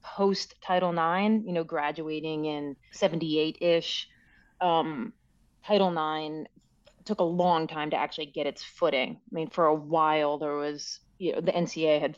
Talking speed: 165 wpm